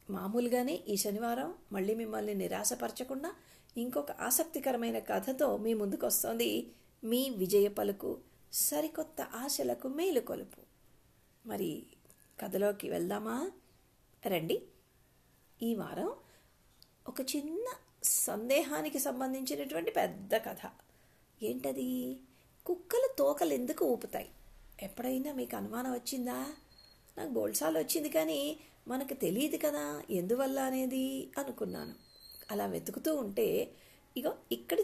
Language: Telugu